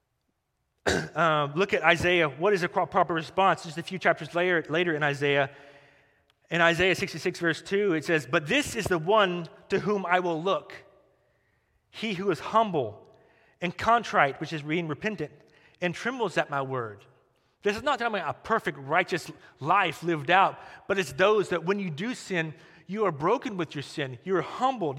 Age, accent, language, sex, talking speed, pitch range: 30-49, American, English, male, 185 wpm, 150-195 Hz